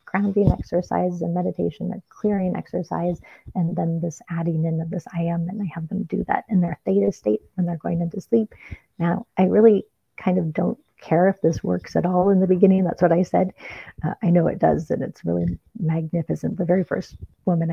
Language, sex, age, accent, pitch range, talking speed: English, female, 40-59, American, 165-195 Hz, 215 wpm